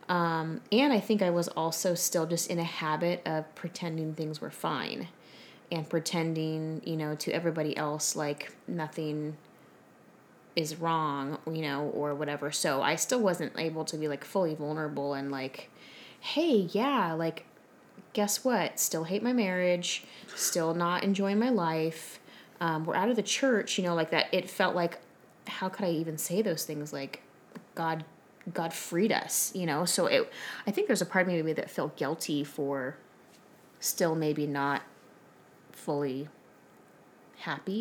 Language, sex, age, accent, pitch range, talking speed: English, female, 20-39, American, 150-185 Hz, 160 wpm